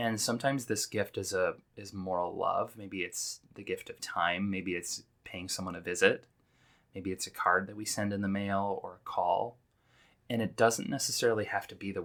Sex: male